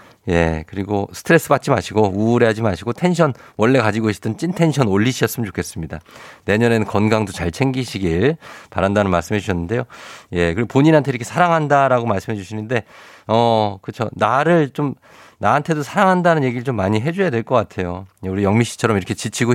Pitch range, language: 100-130 Hz, Korean